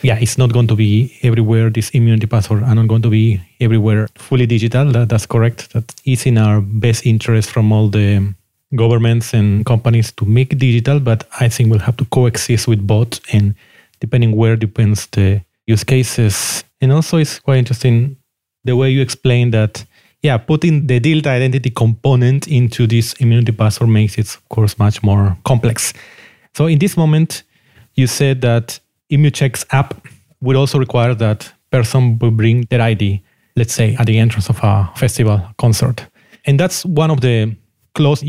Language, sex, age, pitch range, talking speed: English, male, 30-49, 110-130 Hz, 175 wpm